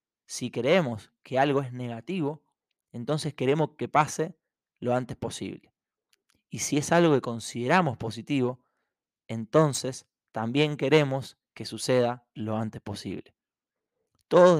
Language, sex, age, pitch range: Spanish, male, 20-39, 115-145 Hz